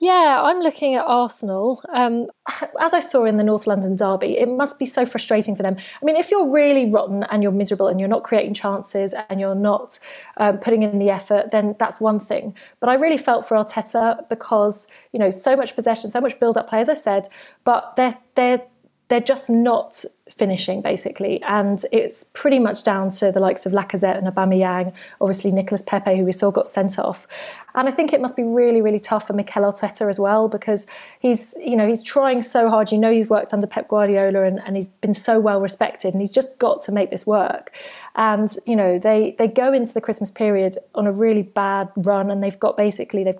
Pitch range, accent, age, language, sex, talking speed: 200-245 Hz, British, 20-39, English, female, 220 wpm